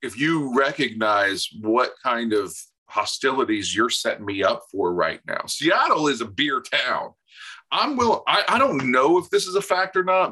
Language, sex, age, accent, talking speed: English, male, 40-59, American, 185 wpm